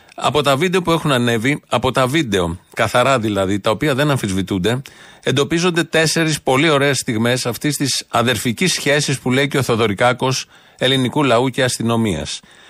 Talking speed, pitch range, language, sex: 155 wpm, 115-165 Hz, Greek, male